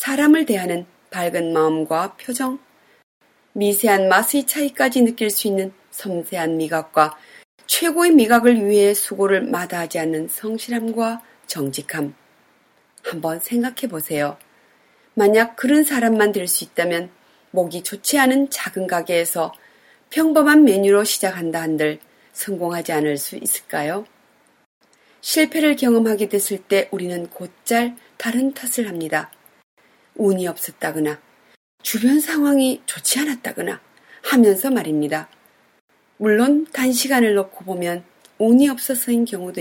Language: Korean